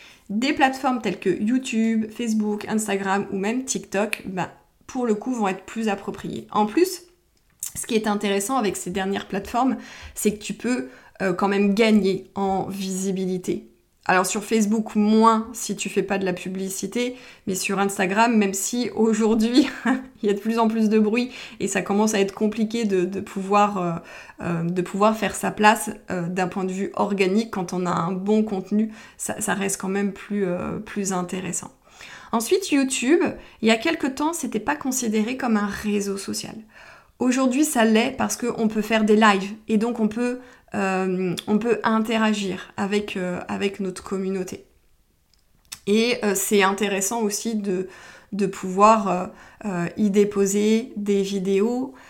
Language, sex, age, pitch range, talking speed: French, female, 20-39, 195-225 Hz, 170 wpm